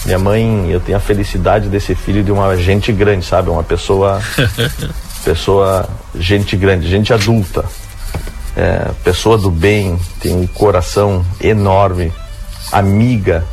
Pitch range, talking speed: 90-105 Hz, 130 wpm